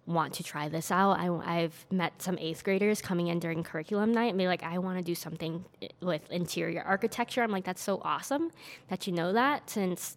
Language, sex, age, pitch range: English, female, 10-29, 170-210 Hz